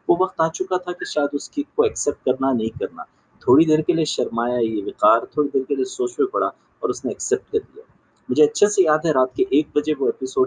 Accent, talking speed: native, 75 wpm